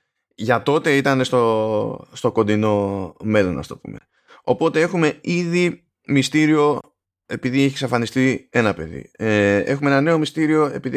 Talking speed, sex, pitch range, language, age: 135 wpm, male, 100-145 Hz, Greek, 20-39